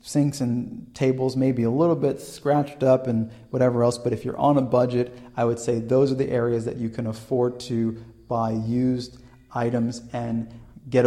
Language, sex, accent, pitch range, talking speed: English, male, American, 115-135 Hz, 195 wpm